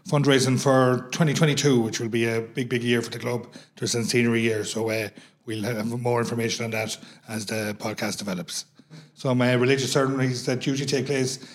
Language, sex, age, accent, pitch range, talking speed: English, male, 30-49, Irish, 115-135 Hz, 190 wpm